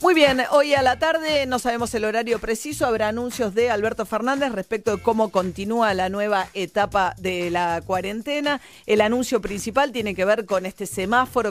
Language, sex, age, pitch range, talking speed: Spanish, female, 40-59, 180-230 Hz, 180 wpm